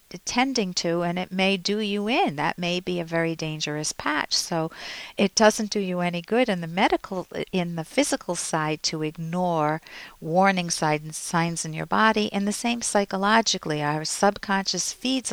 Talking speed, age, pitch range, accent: 170 wpm, 50-69, 165-210 Hz, American